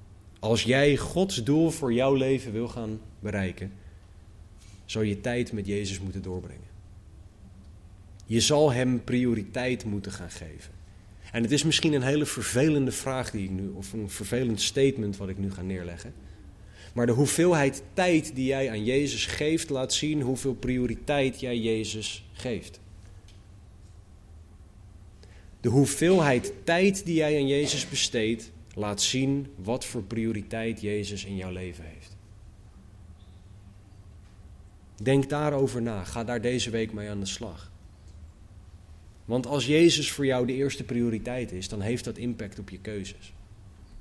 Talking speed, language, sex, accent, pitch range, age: 145 wpm, Dutch, male, Dutch, 95-125 Hz, 30-49